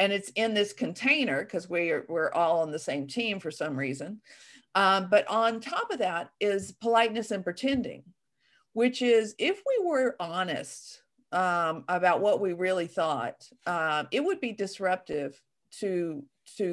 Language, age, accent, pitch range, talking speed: English, 50-69, American, 175-240 Hz, 160 wpm